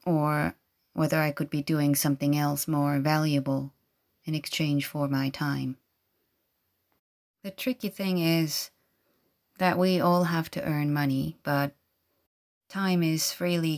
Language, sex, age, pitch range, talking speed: English, female, 30-49, 140-155 Hz, 130 wpm